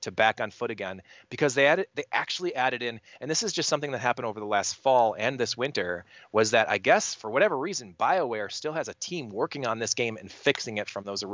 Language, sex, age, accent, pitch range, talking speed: English, male, 30-49, American, 105-140 Hz, 250 wpm